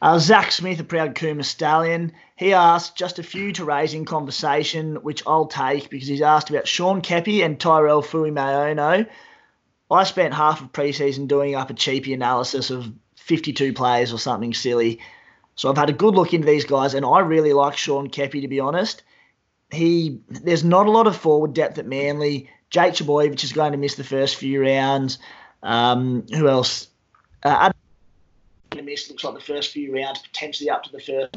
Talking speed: 185 wpm